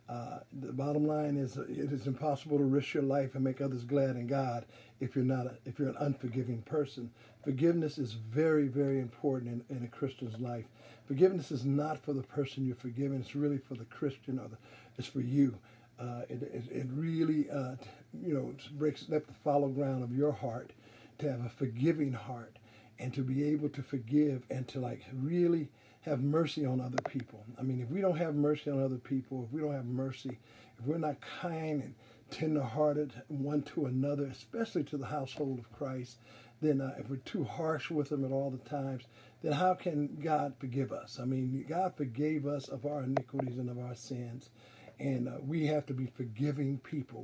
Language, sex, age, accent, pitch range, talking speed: English, male, 50-69, American, 125-145 Hz, 205 wpm